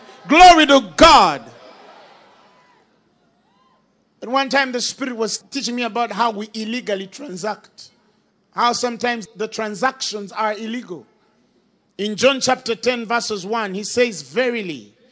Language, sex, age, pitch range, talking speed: English, male, 40-59, 205-265 Hz, 125 wpm